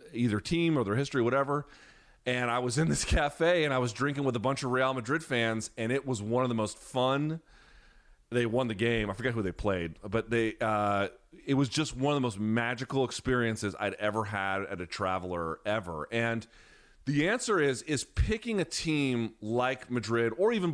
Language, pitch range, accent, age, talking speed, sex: English, 110-140 Hz, American, 30-49, 205 wpm, male